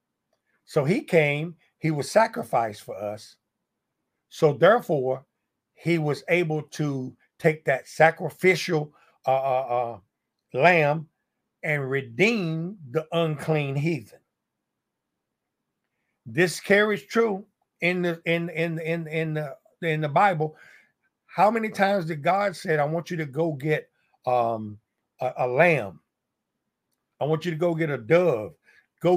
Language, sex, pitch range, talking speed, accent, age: English, male, 140-175 Hz, 135 wpm, American, 50-69